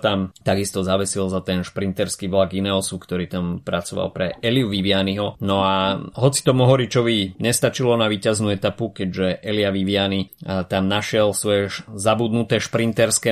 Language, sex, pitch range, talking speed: Slovak, male, 95-115 Hz, 140 wpm